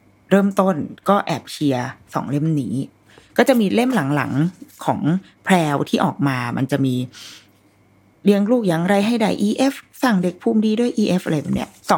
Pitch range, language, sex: 145-195 Hz, Thai, female